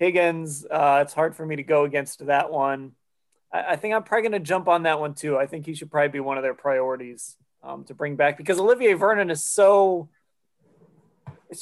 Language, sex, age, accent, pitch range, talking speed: English, male, 20-39, American, 135-165 Hz, 220 wpm